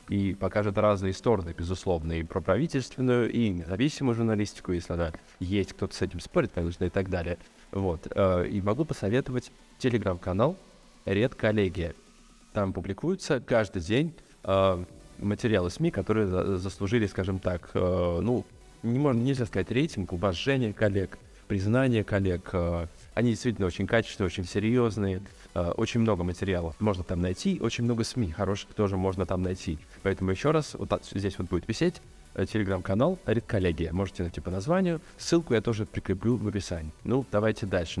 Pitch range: 90-115 Hz